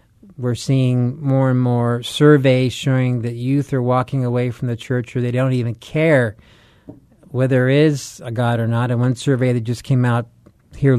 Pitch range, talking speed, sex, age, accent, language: 120-145 Hz, 190 wpm, male, 40-59, American, English